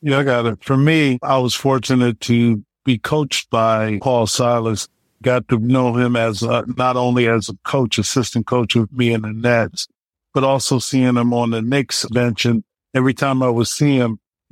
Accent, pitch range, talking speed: American, 120-135 Hz, 200 wpm